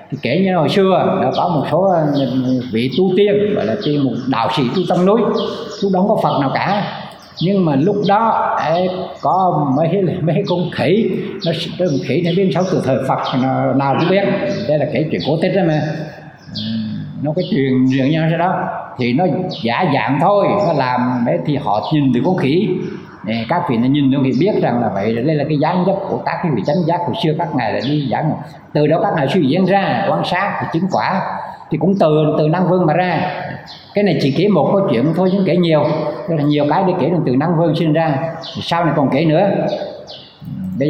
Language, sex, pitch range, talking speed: Vietnamese, male, 140-185 Hz, 225 wpm